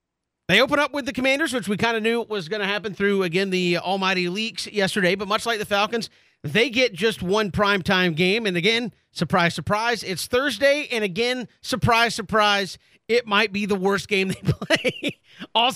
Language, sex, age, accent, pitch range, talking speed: English, male, 40-59, American, 180-230 Hz, 195 wpm